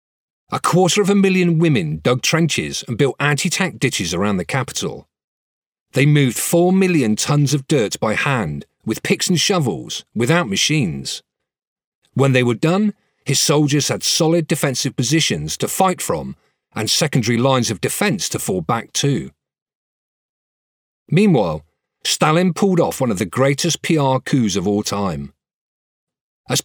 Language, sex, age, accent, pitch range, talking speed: English, male, 40-59, British, 130-170 Hz, 150 wpm